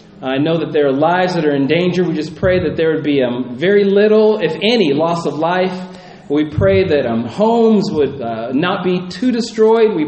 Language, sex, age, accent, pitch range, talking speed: English, male, 40-59, American, 155-215 Hz, 220 wpm